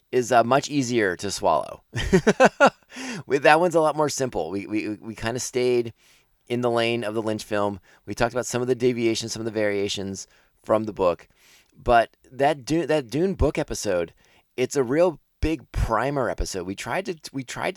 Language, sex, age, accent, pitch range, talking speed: English, male, 20-39, American, 100-130 Hz, 195 wpm